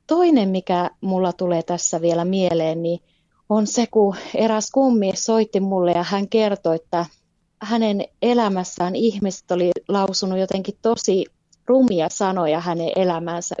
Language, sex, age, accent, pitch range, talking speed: Finnish, female, 20-39, native, 180-220 Hz, 130 wpm